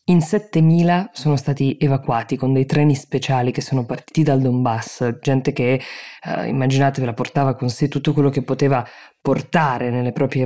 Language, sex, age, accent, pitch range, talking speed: Italian, female, 20-39, native, 125-145 Hz, 170 wpm